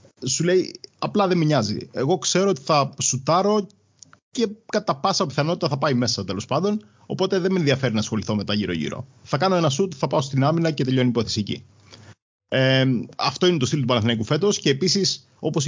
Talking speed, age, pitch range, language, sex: 195 wpm, 30-49, 120-160 Hz, Greek, male